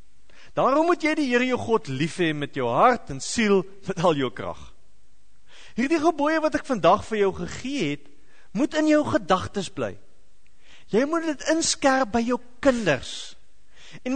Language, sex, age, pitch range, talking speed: English, male, 40-59, 160-270 Hz, 170 wpm